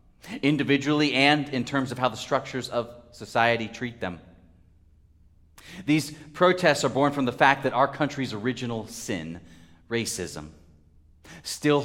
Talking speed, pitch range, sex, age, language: 130 wpm, 85-130 Hz, male, 30-49, English